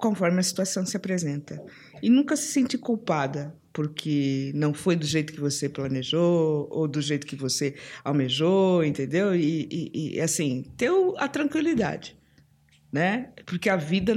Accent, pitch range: Brazilian, 145-190 Hz